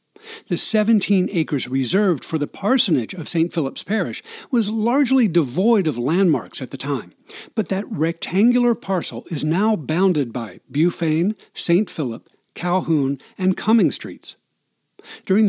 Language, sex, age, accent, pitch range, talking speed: English, male, 60-79, American, 165-220 Hz, 135 wpm